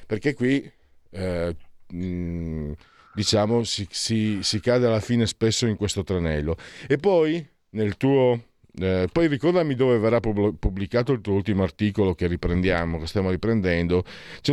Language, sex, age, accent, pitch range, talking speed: Italian, male, 50-69, native, 100-125 Hz, 135 wpm